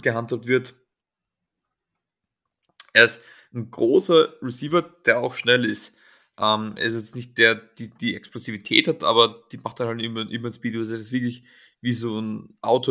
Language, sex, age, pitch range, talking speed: German, male, 30-49, 110-125 Hz, 165 wpm